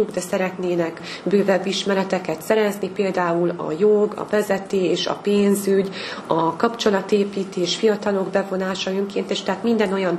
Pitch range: 175-200 Hz